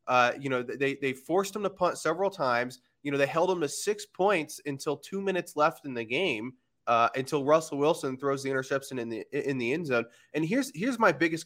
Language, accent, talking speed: English, American, 230 wpm